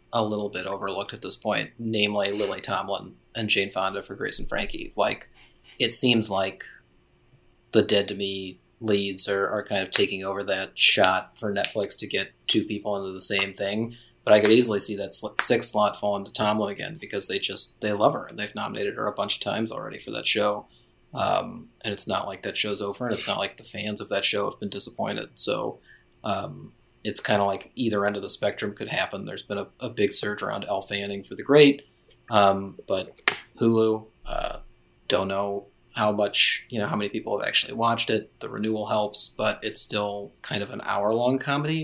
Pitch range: 100-115 Hz